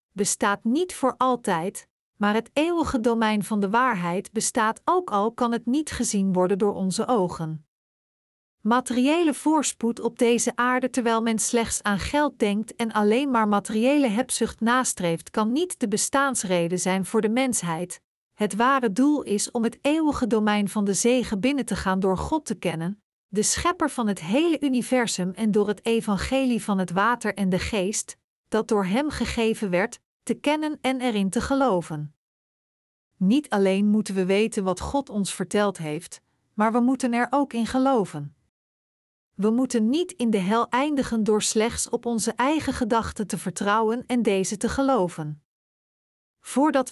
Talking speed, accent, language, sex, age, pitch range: 165 wpm, Dutch, Dutch, female, 50-69, 200-255 Hz